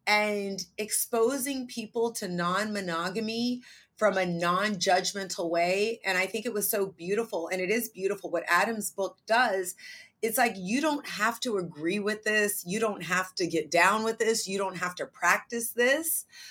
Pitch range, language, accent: 180-245 Hz, English, American